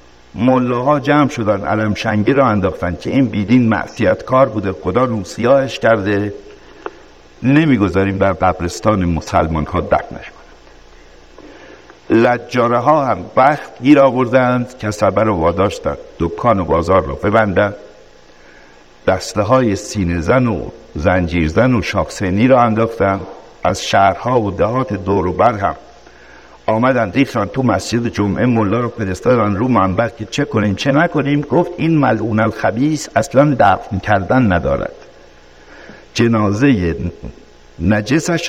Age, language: 60-79, Persian